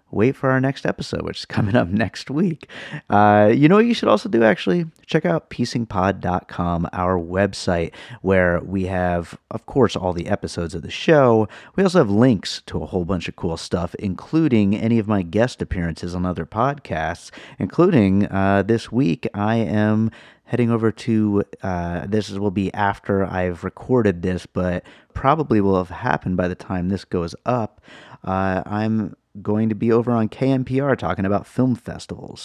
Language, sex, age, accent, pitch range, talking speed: English, male, 30-49, American, 90-115 Hz, 180 wpm